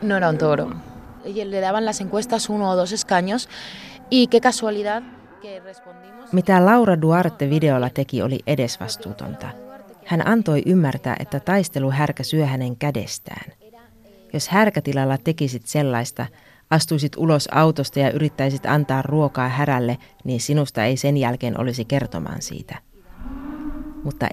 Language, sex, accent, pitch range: Finnish, female, native, 130-170 Hz